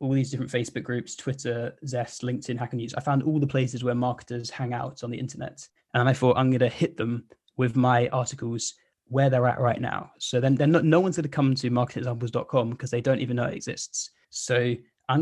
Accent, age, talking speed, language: British, 10-29, 220 wpm, English